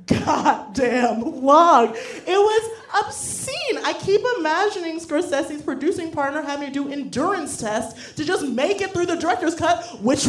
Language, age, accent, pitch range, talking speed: English, 30-49, American, 210-320 Hz, 150 wpm